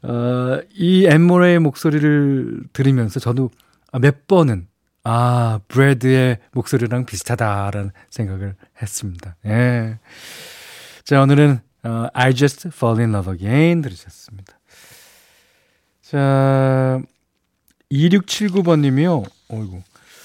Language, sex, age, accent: Korean, male, 40-59, native